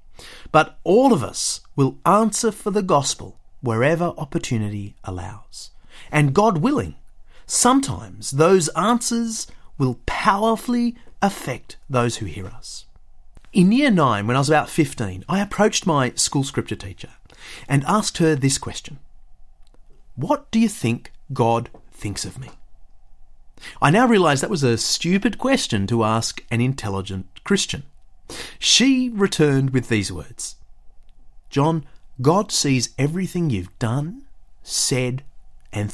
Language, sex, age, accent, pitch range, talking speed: English, male, 30-49, Australian, 105-175 Hz, 130 wpm